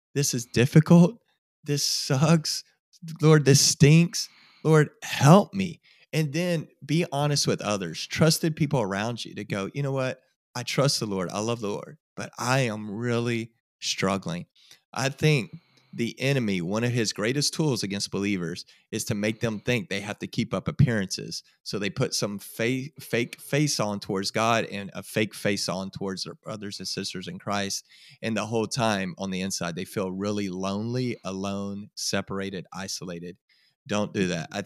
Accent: American